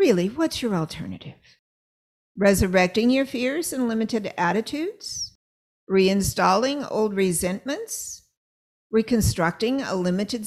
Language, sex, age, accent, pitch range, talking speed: English, female, 50-69, American, 195-285 Hz, 90 wpm